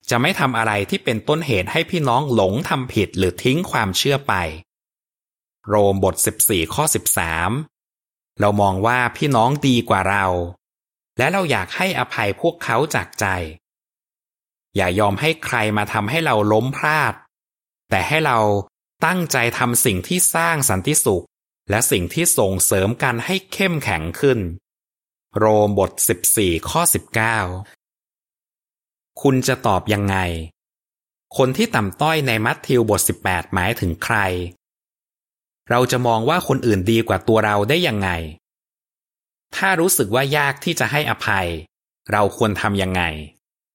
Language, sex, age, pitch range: Thai, male, 20-39, 95-130 Hz